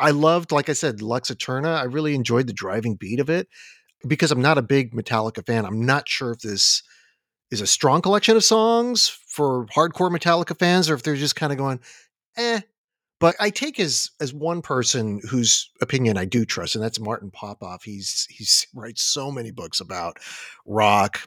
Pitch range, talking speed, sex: 105-150 Hz, 195 wpm, male